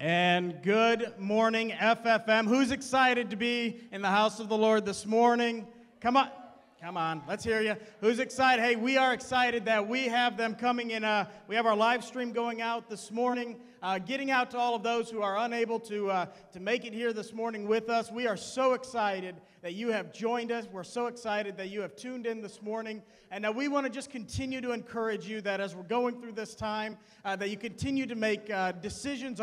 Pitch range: 205-235 Hz